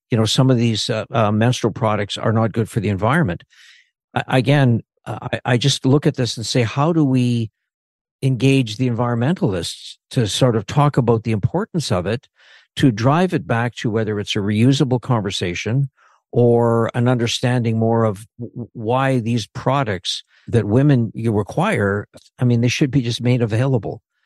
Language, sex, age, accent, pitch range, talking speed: English, male, 60-79, American, 115-140 Hz, 175 wpm